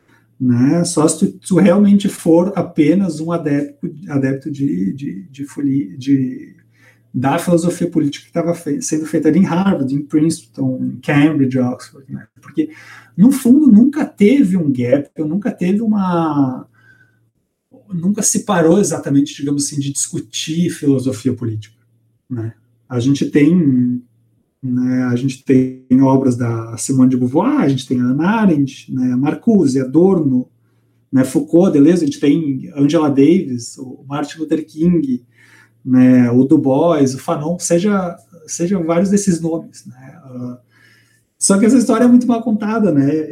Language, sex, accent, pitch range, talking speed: Portuguese, male, Brazilian, 130-170 Hz, 150 wpm